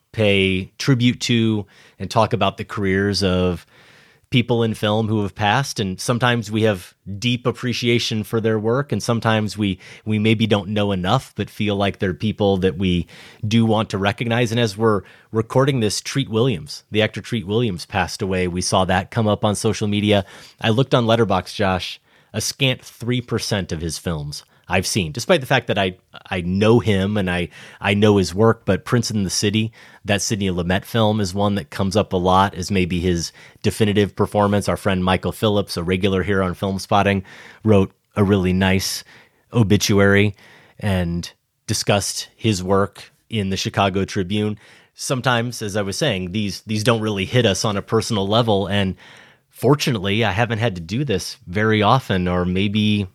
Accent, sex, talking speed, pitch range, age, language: American, male, 185 wpm, 95-115 Hz, 30-49, English